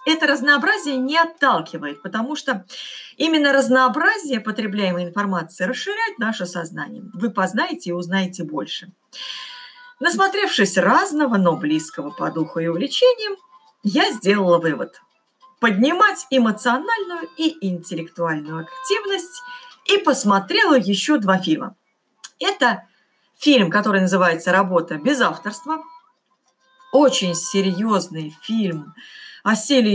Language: Russian